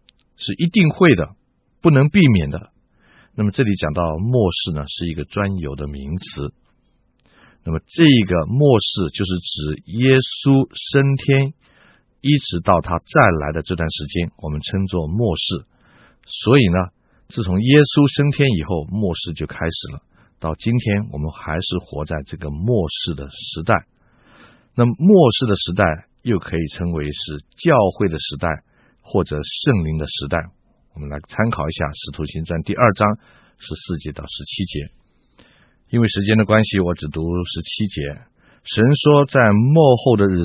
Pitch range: 75-110 Hz